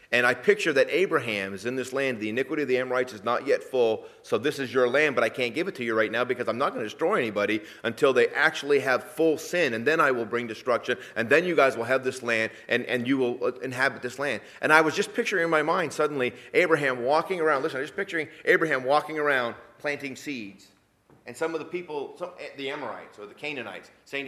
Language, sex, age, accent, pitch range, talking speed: English, male, 30-49, American, 125-200 Hz, 240 wpm